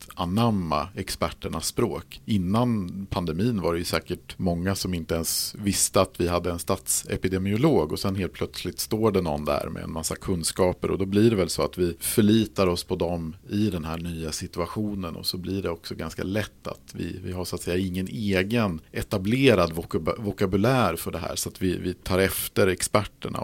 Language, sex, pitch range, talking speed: Swedish, male, 85-105 Hz, 195 wpm